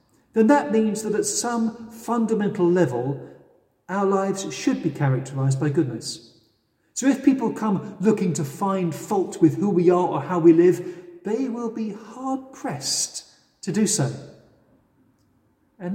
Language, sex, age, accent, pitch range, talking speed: English, male, 40-59, British, 150-220 Hz, 150 wpm